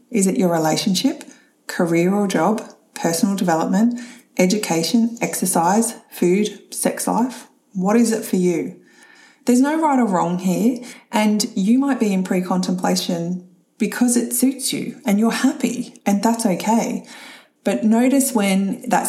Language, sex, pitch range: English, female, 195-250 Hz